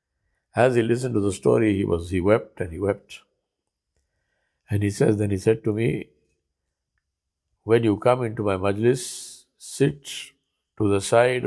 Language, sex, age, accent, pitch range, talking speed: English, male, 50-69, Indian, 85-125 Hz, 160 wpm